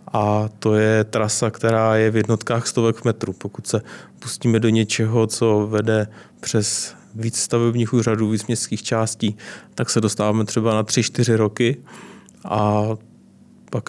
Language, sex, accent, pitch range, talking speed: Czech, male, native, 110-130 Hz, 145 wpm